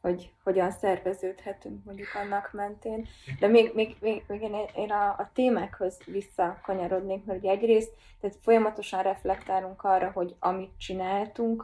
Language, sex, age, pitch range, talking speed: Hungarian, female, 20-39, 155-190 Hz, 125 wpm